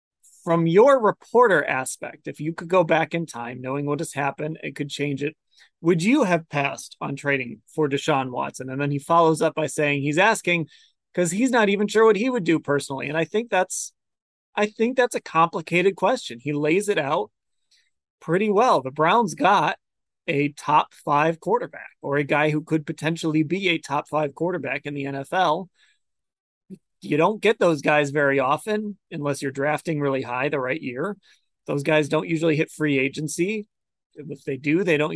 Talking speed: 185 wpm